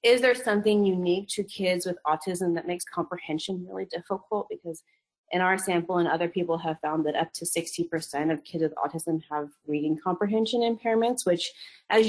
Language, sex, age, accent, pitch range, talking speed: English, female, 30-49, American, 175-215 Hz, 180 wpm